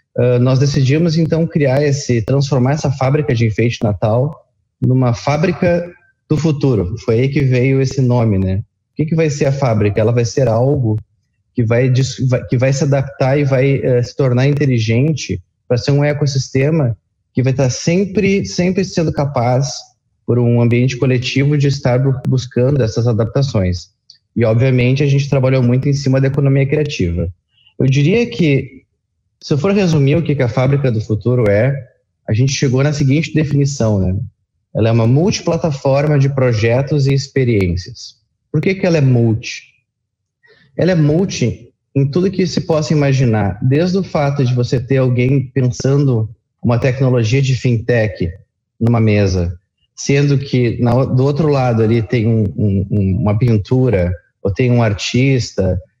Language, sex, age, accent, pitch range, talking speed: Portuguese, male, 20-39, Brazilian, 115-140 Hz, 155 wpm